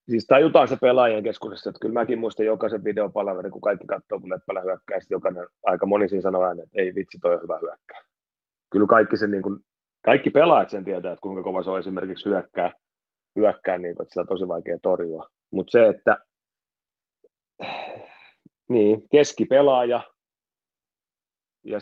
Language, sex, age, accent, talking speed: Finnish, male, 30-49, native, 155 wpm